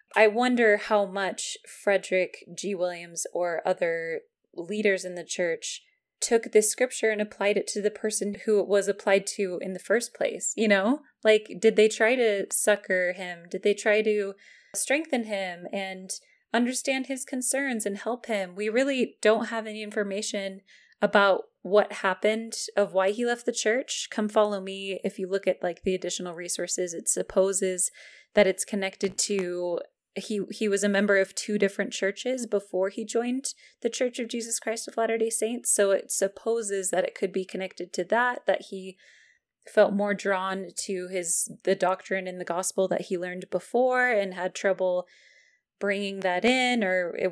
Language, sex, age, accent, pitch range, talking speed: English, female, 20-39, American, 190-225 Hz, 175 wpm